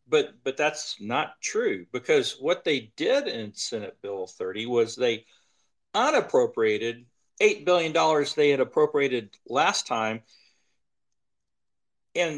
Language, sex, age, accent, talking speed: English, male, 50-69, American, 115 wpm